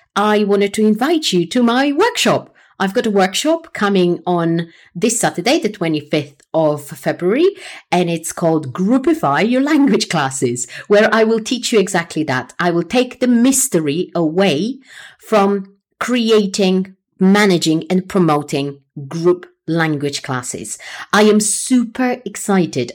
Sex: female